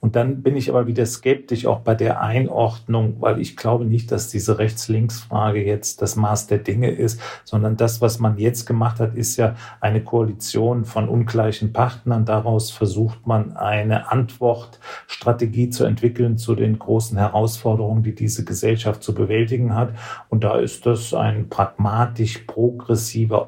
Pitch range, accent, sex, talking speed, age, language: 105-115 Hz, German, male, 160 wpm, 40-59, German